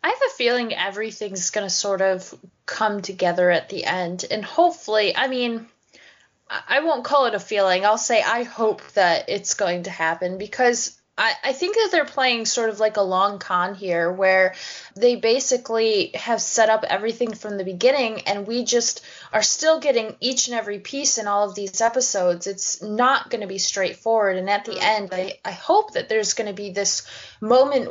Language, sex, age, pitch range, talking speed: English, female, 10-29, 195-245 Hz, 200 wpm